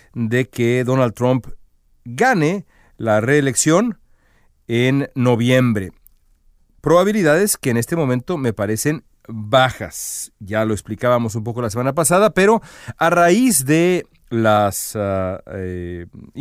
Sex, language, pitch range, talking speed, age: male, Spanish, 110-150 Hz, 115 wpm, 40-59